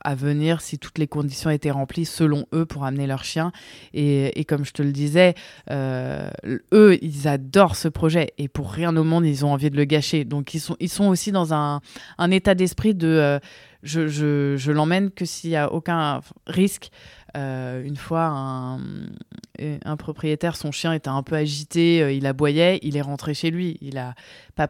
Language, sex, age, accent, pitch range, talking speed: French, female, 20-39, French, 145-175 Hz, 200 wpm